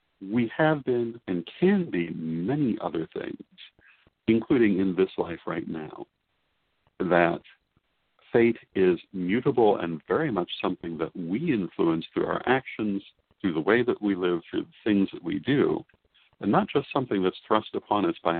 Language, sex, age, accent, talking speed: English, male, 60-79, American, 165 wpm